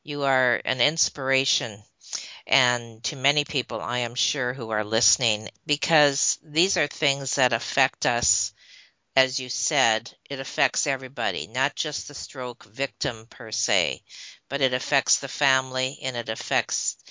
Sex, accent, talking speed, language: female, American, 145 wpm, English